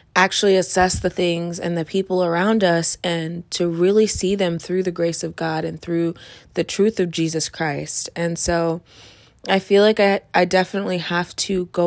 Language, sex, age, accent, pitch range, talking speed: English, female, 20-39, American, 165-200 Hz, 185 wpm